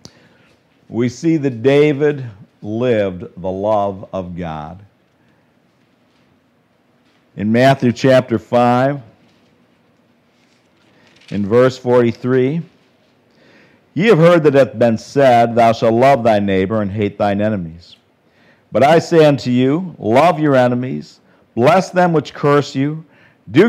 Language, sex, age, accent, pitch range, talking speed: English, male, 50-69, American, 90-130 Hz, 120 wpm